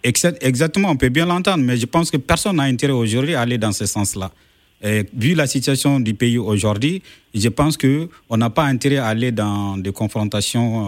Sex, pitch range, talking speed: male, 115-165 Hz, 205 wpm